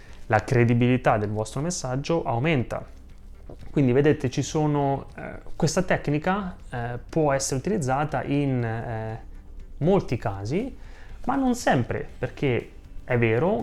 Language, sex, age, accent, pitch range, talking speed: Italian, male, 20-39, native, 115-145 Hz, 120 wpm